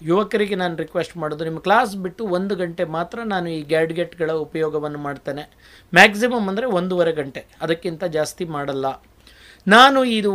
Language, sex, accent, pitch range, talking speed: Kannada, male, native, 165-215 Hz, 140 wpm